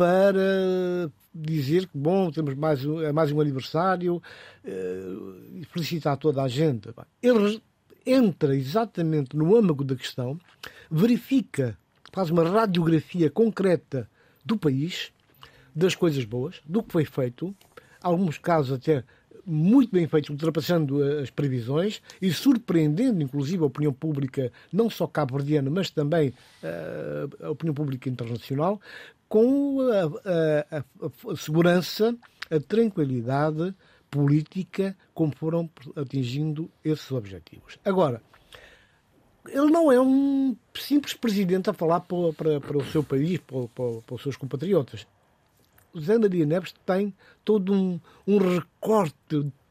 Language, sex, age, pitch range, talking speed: Portuguese, male, 60-79, 145-190 Hz, 125 wpm